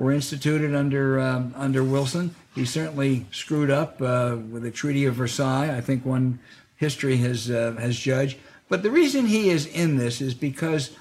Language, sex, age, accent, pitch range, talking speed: English, male, 60-79, American, 120-150 Hz, 180 wpm